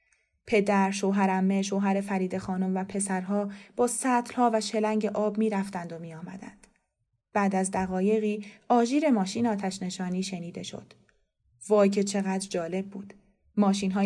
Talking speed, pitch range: 140 wpm, 190-215 Hz